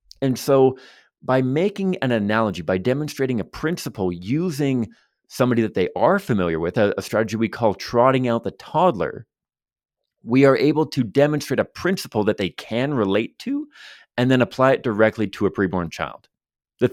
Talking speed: 170 wpm